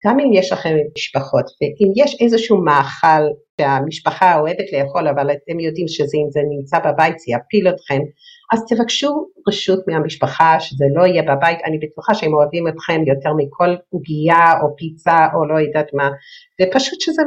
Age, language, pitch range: 50-69, Hebrew, 150-205 Hz